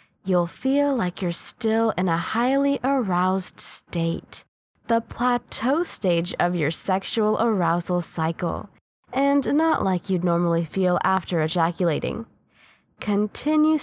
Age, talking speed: 10-29, 115 wpm